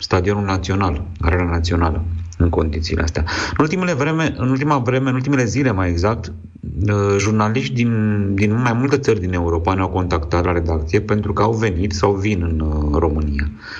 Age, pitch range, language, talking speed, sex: 30-49, 85-105 Hz, Romanian, 165 wpm, male